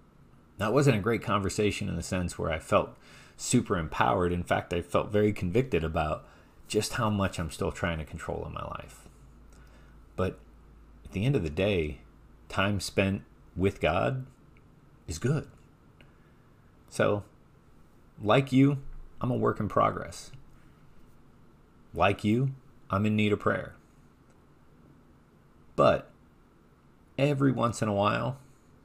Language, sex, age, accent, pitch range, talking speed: English, male, 30-49, American, 85-110 Hz, 135 wpm